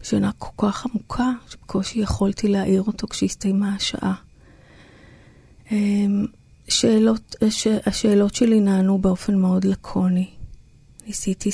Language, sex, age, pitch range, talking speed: Hebrew, female, 30-49, 195-220 Hz, 95 wpm